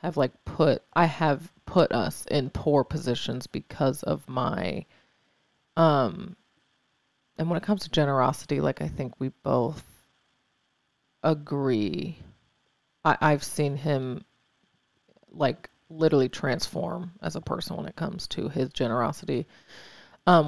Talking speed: 125 wpm